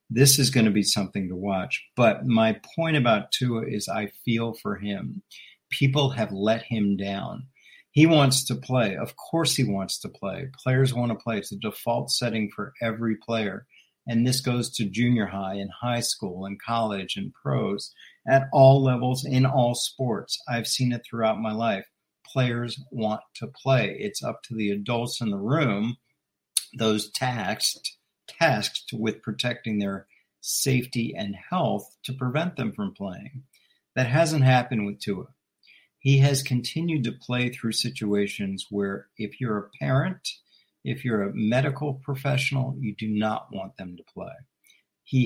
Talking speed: 165 wpm